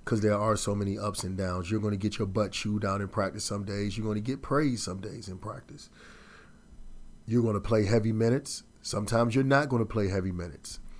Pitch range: 105-130 Hz